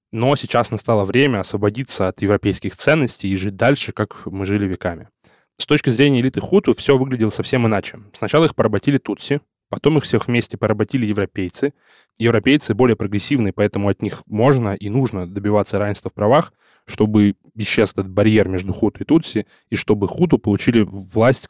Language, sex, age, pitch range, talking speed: Russian, male, 10-29, 100-125 Hz, 165 wpm